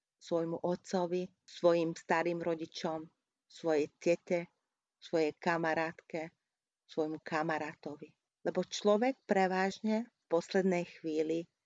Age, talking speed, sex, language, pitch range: 40-59, 85 wpm, female, Hungarian, 165-195 Hz